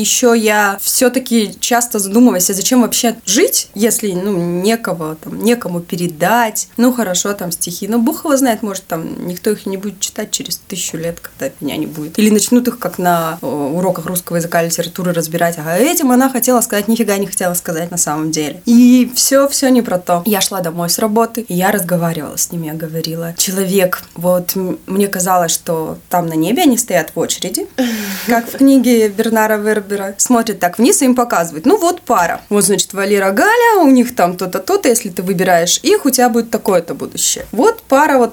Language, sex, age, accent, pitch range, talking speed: Russian, female, 20-39, native, 175-240 Hz, 195 wpm